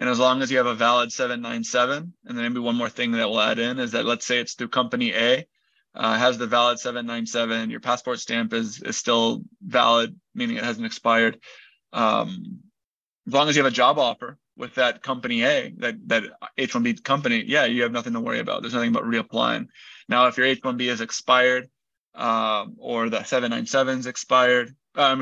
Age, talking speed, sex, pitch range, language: 20-39, 195 wpm, male, 120-150 Hz, English